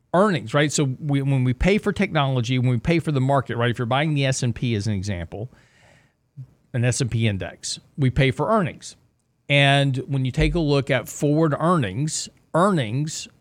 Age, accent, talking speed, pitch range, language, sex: 40-59, American, 180 wpm, 120-150 Hz, English, male